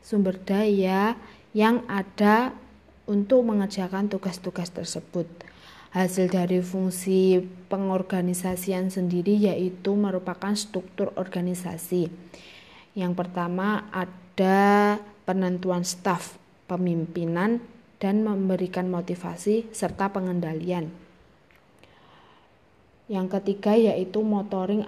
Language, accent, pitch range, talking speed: Indonesian, native, 180-200 Hz, 75 wpm